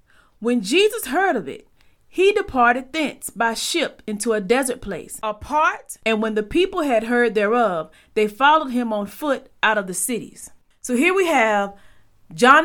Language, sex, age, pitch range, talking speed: English, female, 30-49, 210-275 Hz, 170 wpm